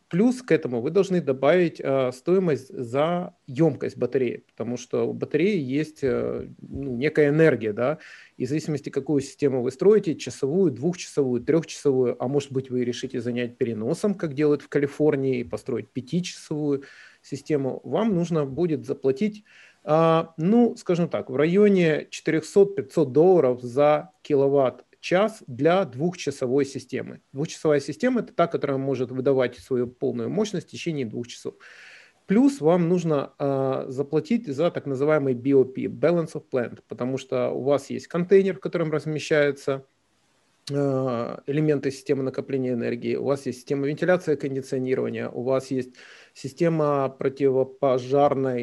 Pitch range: 130-160 Hz